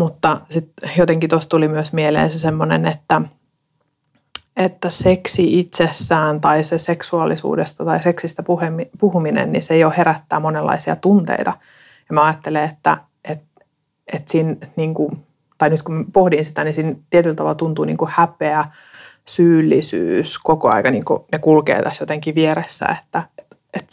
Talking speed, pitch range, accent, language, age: 150 wpm, 150-165 Hz, native, Finnish, 30-49